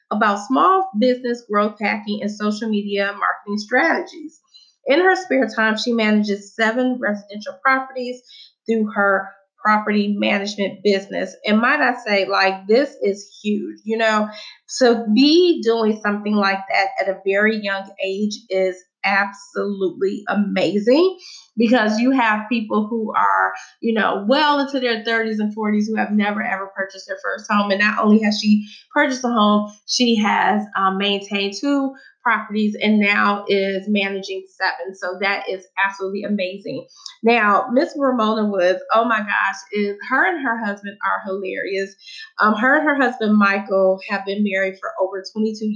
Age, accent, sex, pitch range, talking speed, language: 20-39, American, female, 200-240 Hz, 155 wpm, English